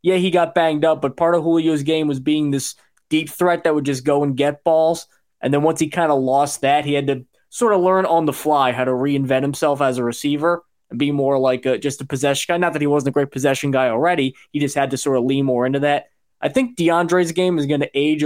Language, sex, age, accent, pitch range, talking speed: English, male, 20-39, American, 140-170 Hz, 265 wpm